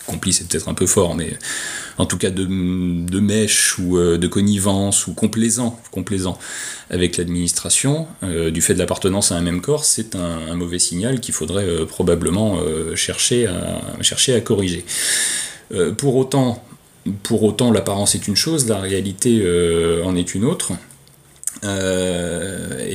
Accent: French